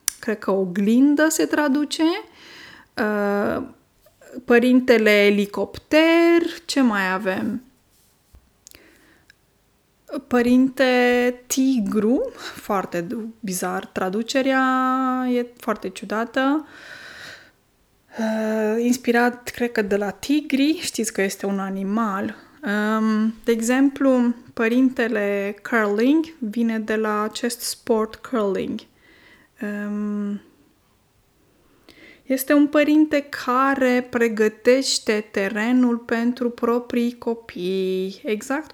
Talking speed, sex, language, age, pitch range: 75 wpm, female, Romanian, 20-39, 210-265 Hz